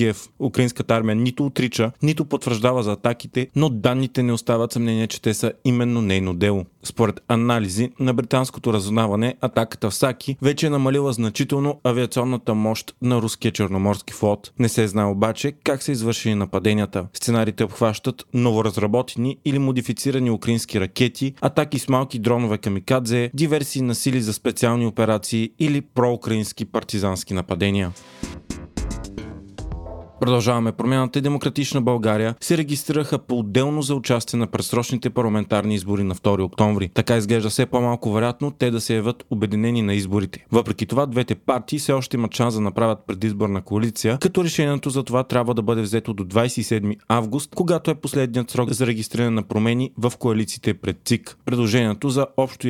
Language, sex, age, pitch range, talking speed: Bulgarian, male, 30-49, 110-130 Hz, 150 wpm